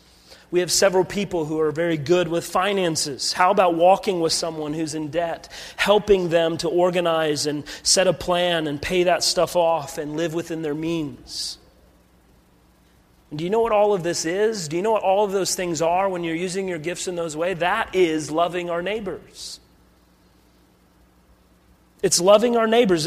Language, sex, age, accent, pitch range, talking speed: English, male, 30-49, American, 160-205 Hz, 180 wpm